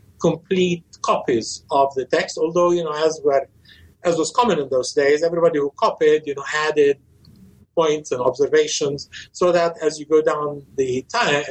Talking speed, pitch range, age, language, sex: 170 wpm, 145-185 Hz, 60-79, English, male